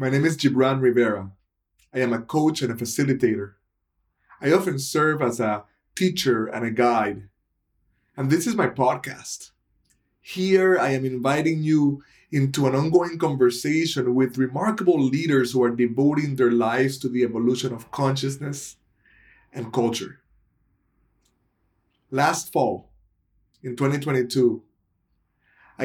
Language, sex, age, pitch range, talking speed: English, male, 20-39, 120-140 Hz, 125 wpm